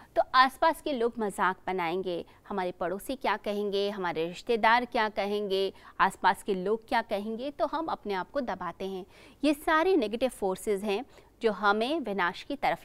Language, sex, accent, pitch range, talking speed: Hindi, female, native, 195-260 Hz, 170 wpm